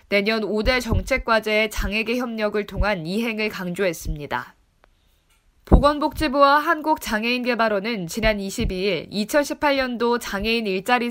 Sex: female